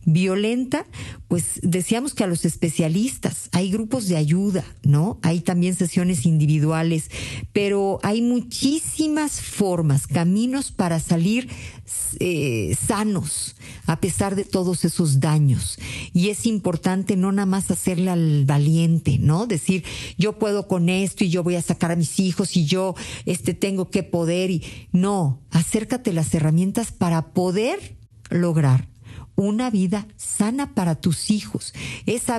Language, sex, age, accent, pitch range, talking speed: Spanish, female, 50-69, Mexican, 150-190 Hz, 140 wpm